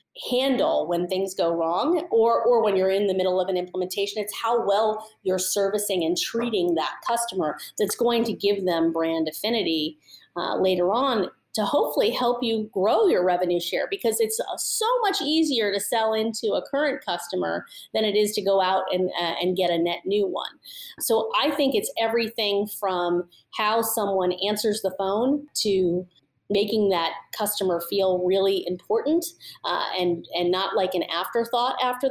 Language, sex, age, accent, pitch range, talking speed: English, female, 30-49, American, 185-235 Hz, 175 wpm